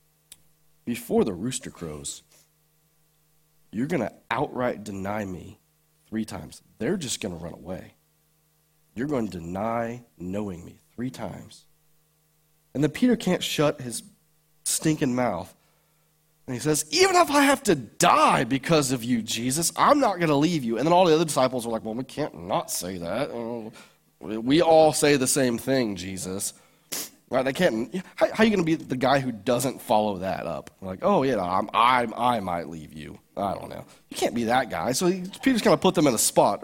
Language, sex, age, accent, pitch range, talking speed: English, male, 30-49, American, 110-165 Hz, 195 wpm